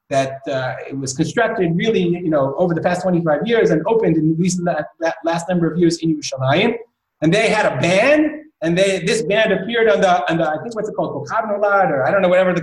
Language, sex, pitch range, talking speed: English, male, 170-235 Hz, 245 wpm